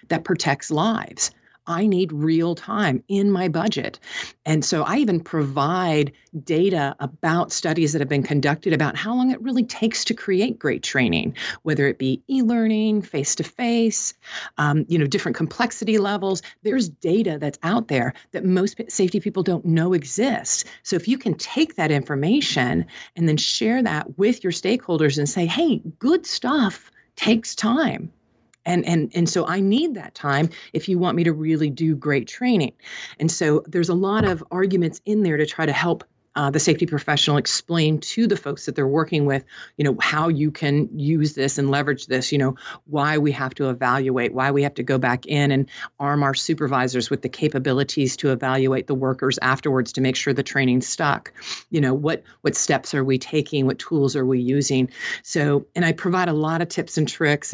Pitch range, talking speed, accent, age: 140-185 Hz, 190 wpm, American, 40-59